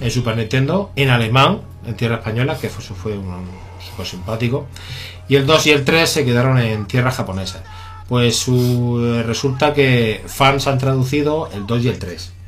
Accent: Spanish